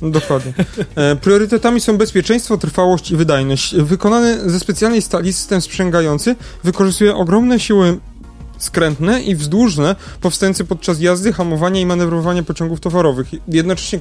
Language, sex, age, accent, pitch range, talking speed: Polish, male, 30-49, native, 160-210 Hz, 120 wpm